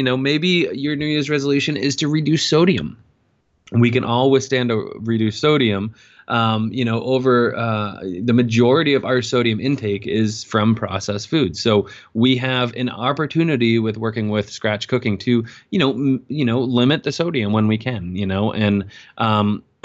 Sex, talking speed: male, 175 wpm